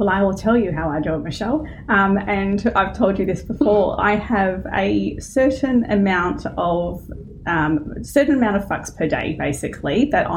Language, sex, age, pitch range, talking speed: English, female, 30-49, 190-230 Hz, 185 wpm